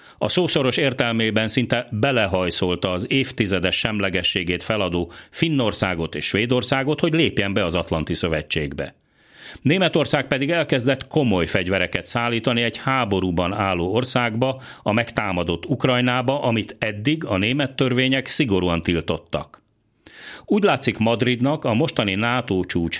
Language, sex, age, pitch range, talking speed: Hungarian, male, 40-59, 95-135 Hz, 115 wpm